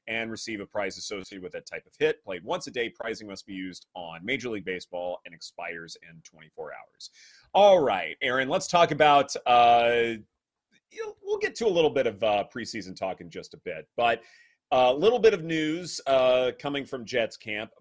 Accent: American